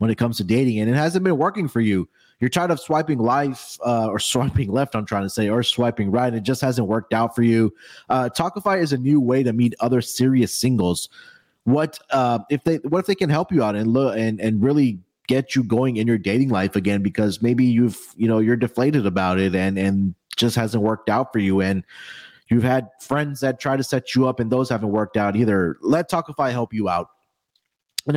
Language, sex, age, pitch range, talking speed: English, male, 30-49, 105-140 Hz, 235 wpm